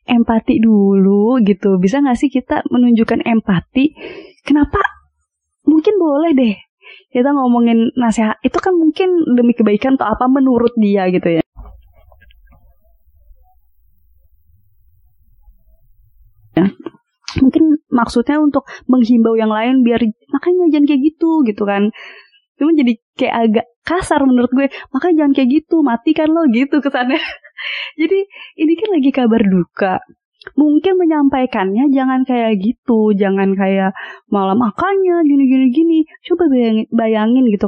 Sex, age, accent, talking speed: female, 20-39, native, 125 wpm